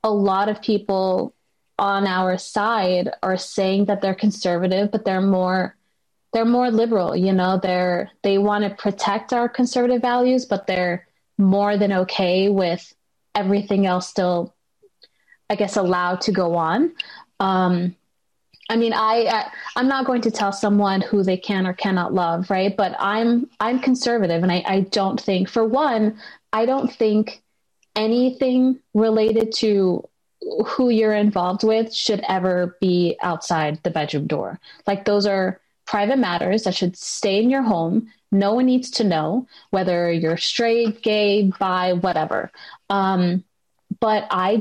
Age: 20-39